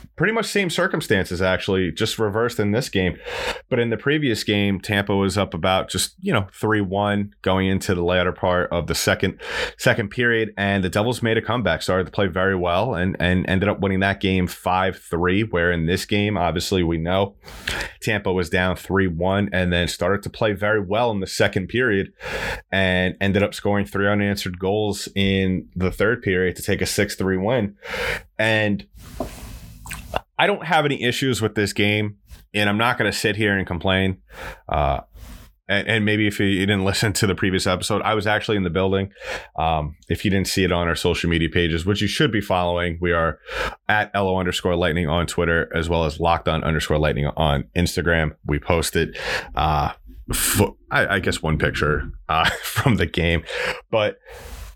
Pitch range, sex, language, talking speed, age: 90-105 Hz, male, English, 190 wpm, 30-49